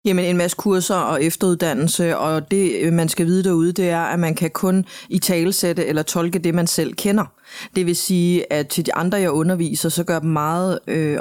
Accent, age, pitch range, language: native, 30-49, 155-180 Hz, Danish